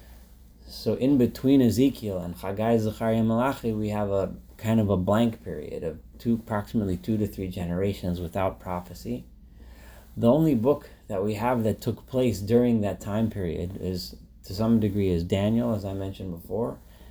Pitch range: 90-110 Hz